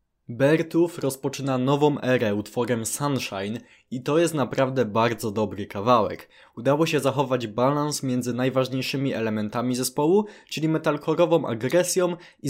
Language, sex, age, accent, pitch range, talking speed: Polish, male, 20-39, native, 120-150 Hz, 120 wpm